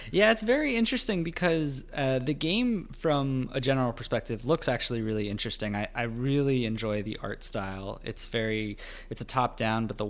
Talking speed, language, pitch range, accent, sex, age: 180 wpm, English, 110-150 Hz, American, male, 20-39